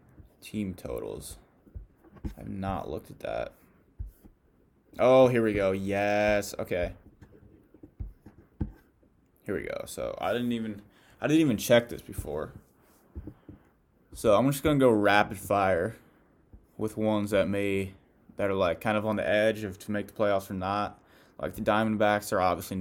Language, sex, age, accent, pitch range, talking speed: English, male, 20-39, American, 95-115 Hz, 150 wpm